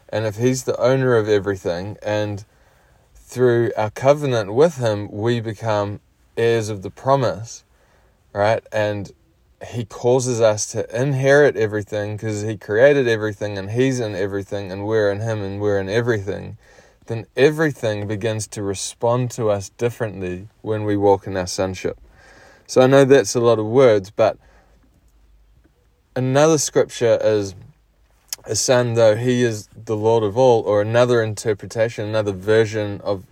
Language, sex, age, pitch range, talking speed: English, male, 20-39, 100-120 Hz, 150 wpm